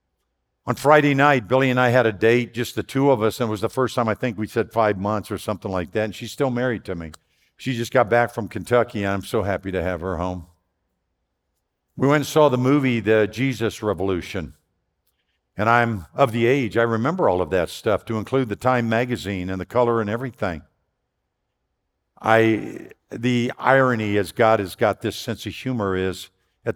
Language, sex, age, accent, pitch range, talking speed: English, male, 50-69, American, 95-120 Hz, 210 wpm